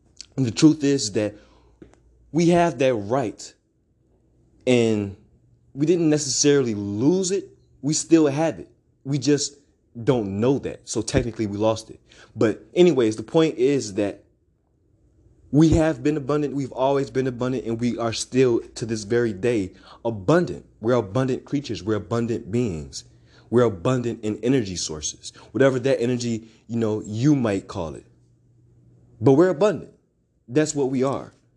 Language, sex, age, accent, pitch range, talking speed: English, male, 20-39, American, 105-135 Hz, 150 wpm